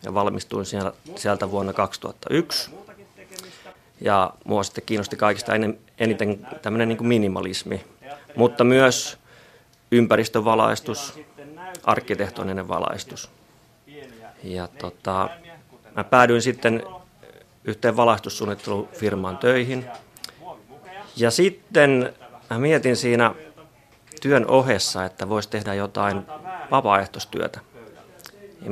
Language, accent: Finnish, native